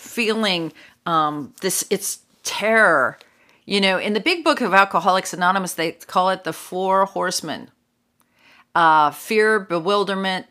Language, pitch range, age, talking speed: English, 160-220 Hz, 40-59, 130 wpm